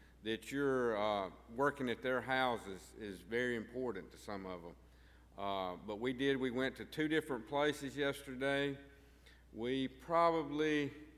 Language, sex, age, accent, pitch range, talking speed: English, male, 50-69, American, 110-140 Hz, 145 wpm